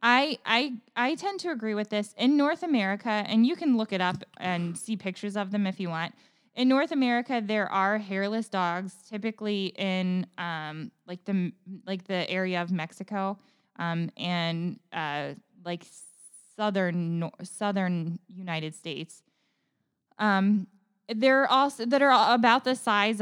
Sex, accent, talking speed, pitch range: female, American, 150 wpm, 185-225 Hz